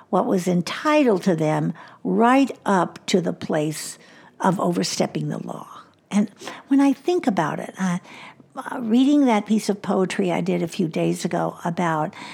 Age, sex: 60-79, female